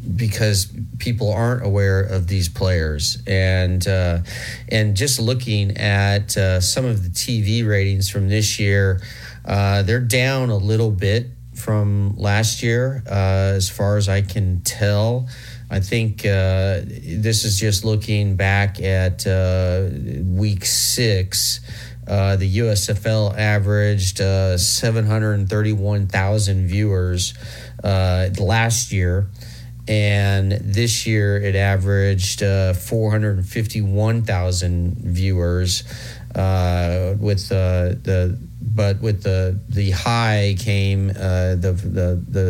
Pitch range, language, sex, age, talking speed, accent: 95-115 Hz, English, male, 30-49, 120 wpm, American